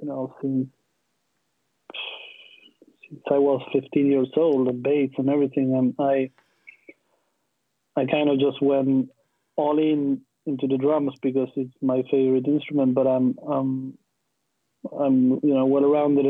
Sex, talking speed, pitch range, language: male, 140 wpm, 130-145 Hz, English